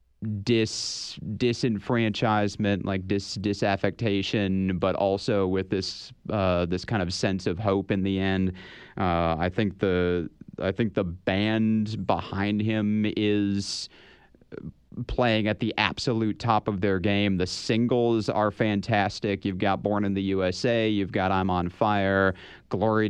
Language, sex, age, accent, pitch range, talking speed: English, male, 30-49, American, 95-110 Hz, 140 wpm